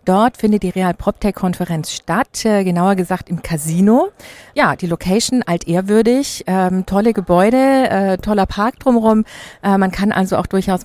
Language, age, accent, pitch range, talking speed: German, 50-69, German, 185-230 Hz, 165 wpm